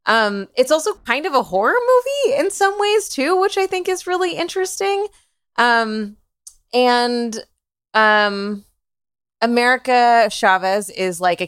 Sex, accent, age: female, American, 20-39